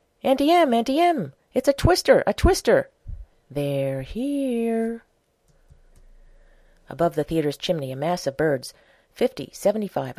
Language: English